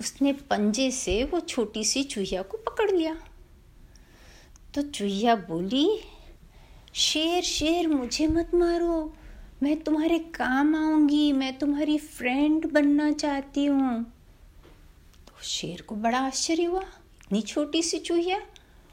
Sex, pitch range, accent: female, 230-310 Hz, native